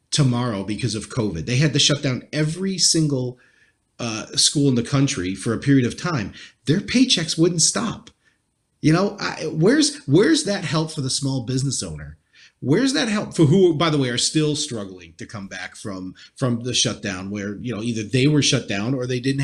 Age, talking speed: 30-49, 205 wpm